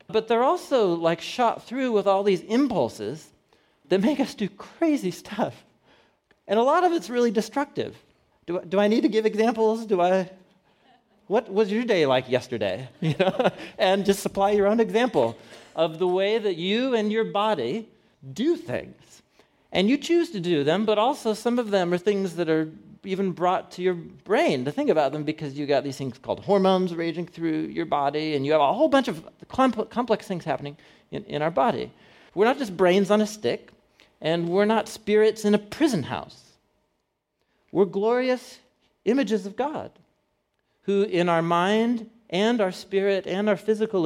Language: English